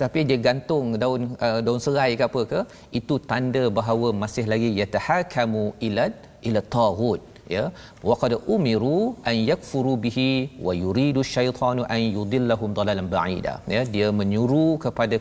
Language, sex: Malayalam, male